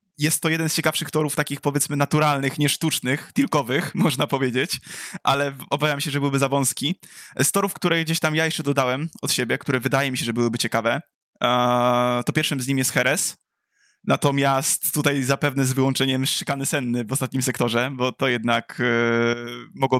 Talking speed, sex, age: 170 wpm, male, 20-39